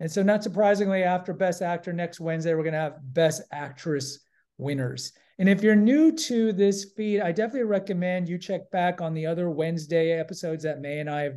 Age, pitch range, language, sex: 40-59, 150-190 Hz, English, male